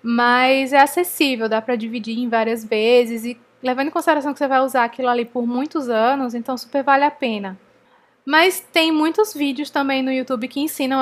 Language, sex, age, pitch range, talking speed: Portuguese, female, 10-29, 240-285 Hz, 195 wpm